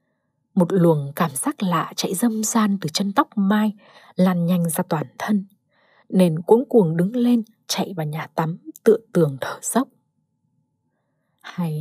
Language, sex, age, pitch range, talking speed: Vietnamese, female, 20-39, 160-220 Hz, 160 wpm